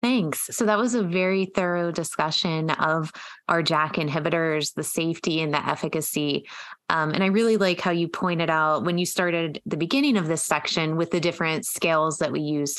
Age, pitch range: 20-39, 150-175 Hz